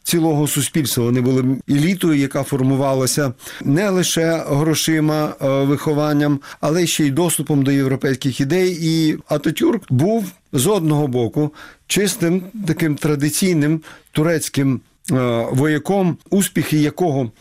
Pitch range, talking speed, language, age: 130-165 Hz, 105 wpm, Ukrainian, 40-59